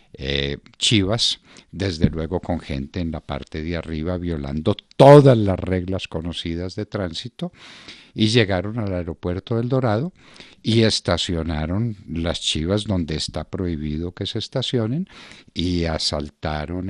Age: 50-69